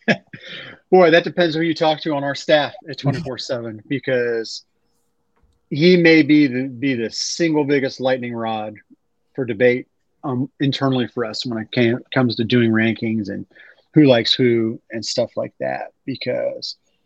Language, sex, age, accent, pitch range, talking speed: English, male, 30-49, American, 120-150 Hz, 155 wpm